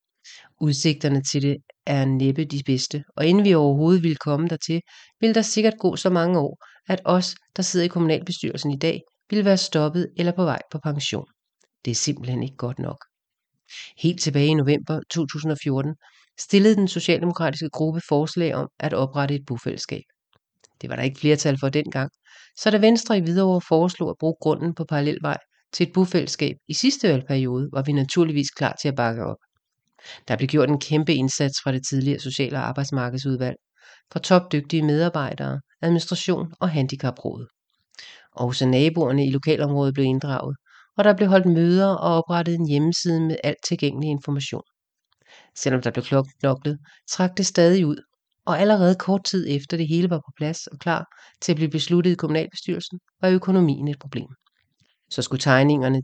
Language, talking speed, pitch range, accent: English, 170 wpm, 140-175 Hz, Danish